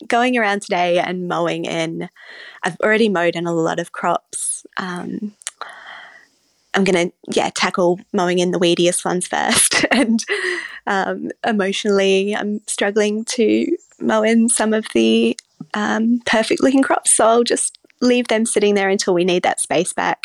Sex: female